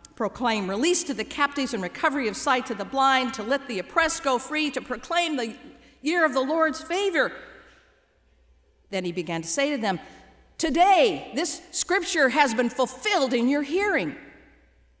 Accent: American